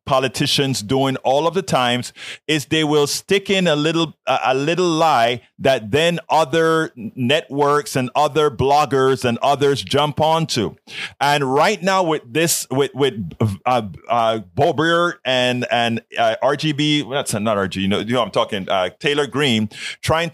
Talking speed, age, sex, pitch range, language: 165 wpm, 30-49, male, 130-165 Hz, English